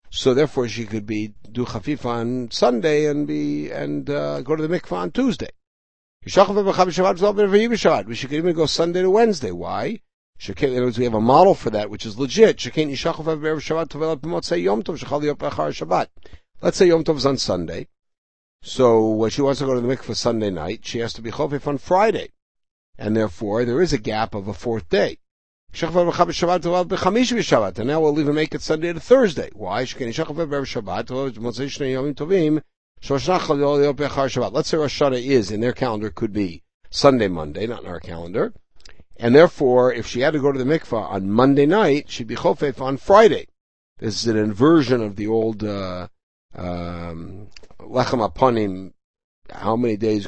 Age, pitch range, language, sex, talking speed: 60-79, 105-155 Hz, English, male, 155 wpm